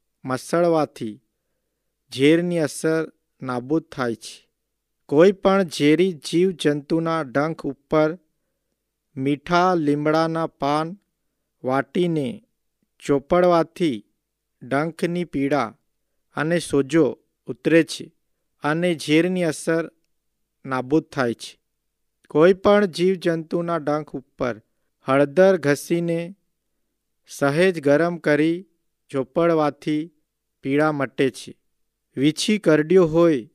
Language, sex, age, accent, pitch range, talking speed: Hindi, male, 50-69, native, 145-175 Hz, 65 wpm